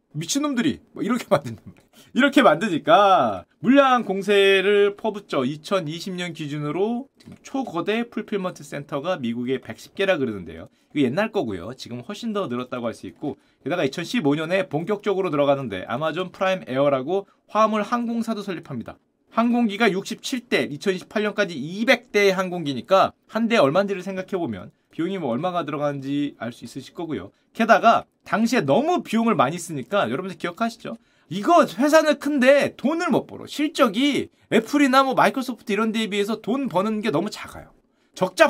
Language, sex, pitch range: Korean, male, 170-240 Hz